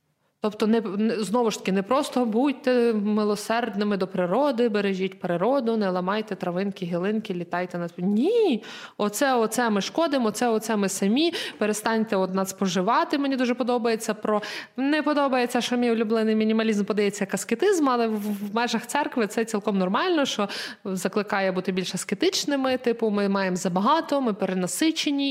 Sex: female